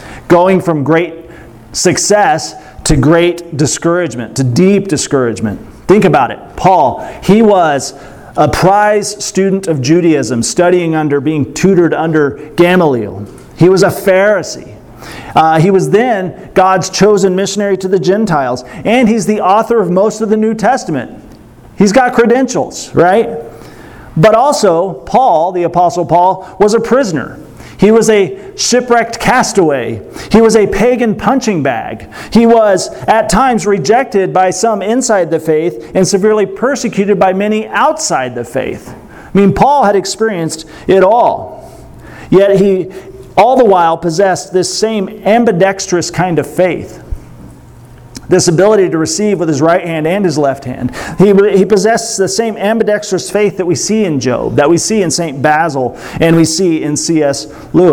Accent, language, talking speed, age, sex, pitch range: American, English, 155 wpm, 40-59, male, 160-205 Hz